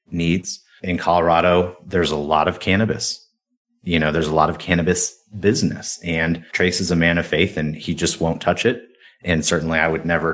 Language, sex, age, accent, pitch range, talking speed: English, male, 30-49, American, 80-95 Hz, 195 wpm